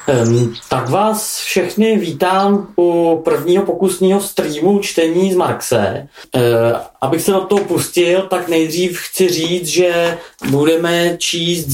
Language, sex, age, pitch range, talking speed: Czech, male, 30-49, 155-180 Hz, 130 wpm